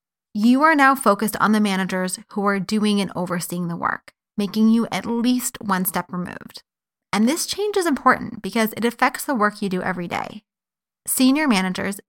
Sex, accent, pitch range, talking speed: female, American, 200-250 Hz, 185 wpm